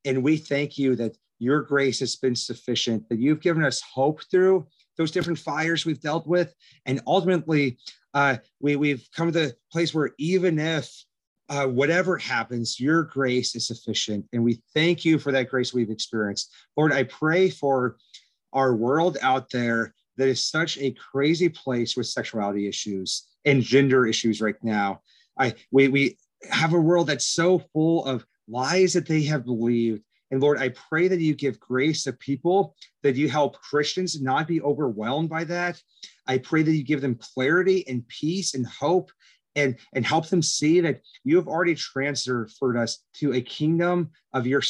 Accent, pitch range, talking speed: American, 130-170 Hz, 180 wpm